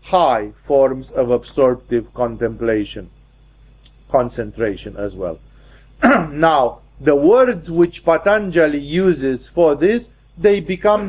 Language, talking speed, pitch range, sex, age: English, 95 wpm, 140-175 Hz, male, 50-69